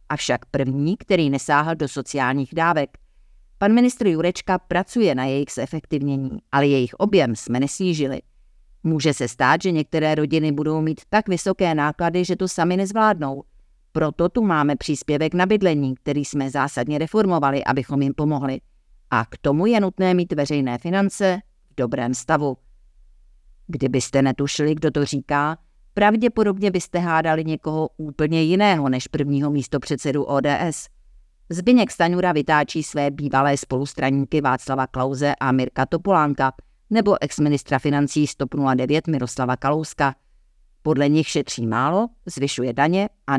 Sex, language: female, Czech